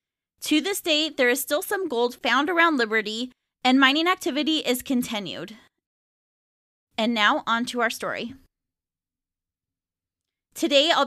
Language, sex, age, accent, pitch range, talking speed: English, female, 20-39, American, 215-280 Hz, 130 wpm